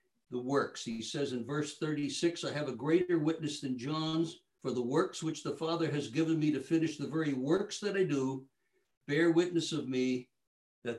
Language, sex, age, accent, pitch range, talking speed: English, male, 60-79, American, 125-170 Hz, 190 wpm